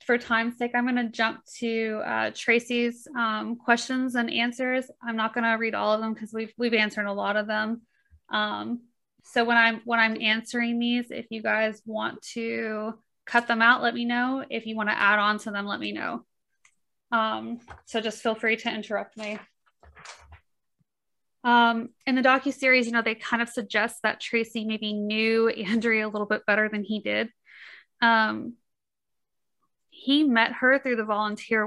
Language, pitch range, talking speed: English, 215-240 Hz, 185 wpm